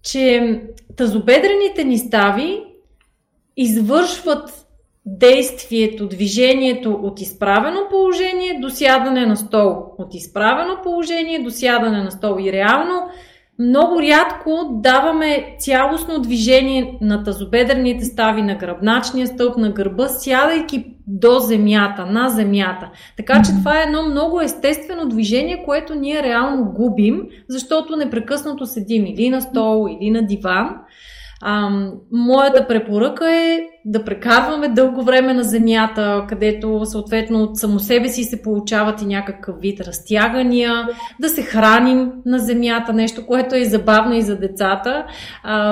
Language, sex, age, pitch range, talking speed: Bulgarian, female, 30-49, 215-280 Hz, 125 wpm